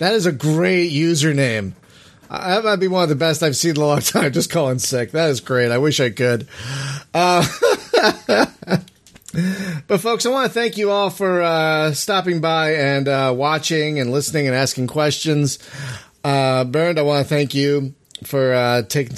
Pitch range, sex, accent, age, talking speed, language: 135-180 Hz, male, American, 30-49, 185 wpm, English